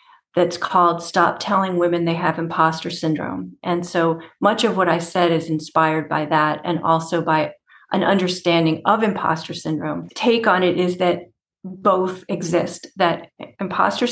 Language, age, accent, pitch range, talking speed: English, 40-59, American, 170-210 Hz, 155 wpm